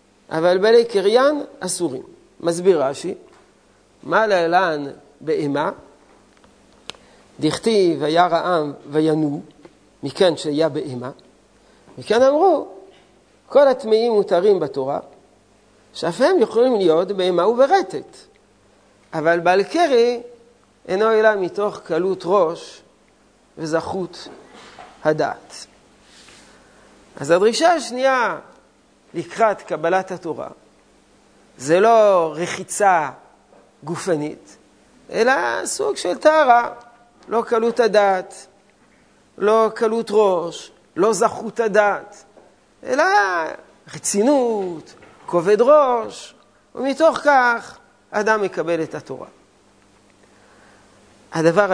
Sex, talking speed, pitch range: male, 85 wpm, 165-235 Hz